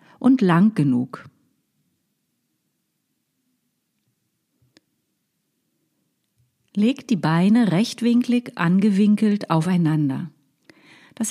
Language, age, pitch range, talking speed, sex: German, 40-59, 160-230 Hz, 55 wpm, female